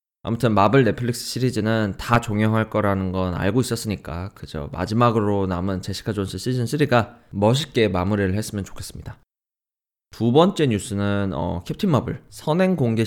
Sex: male